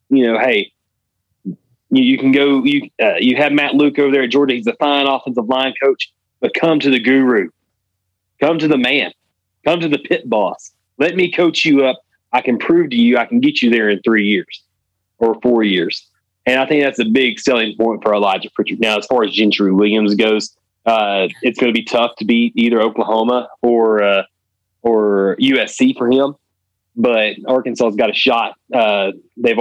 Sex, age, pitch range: male, 30-49, 105-130 Hz